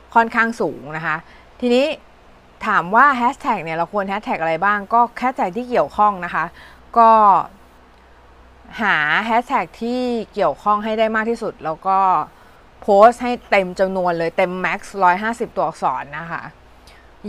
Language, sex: Thai, female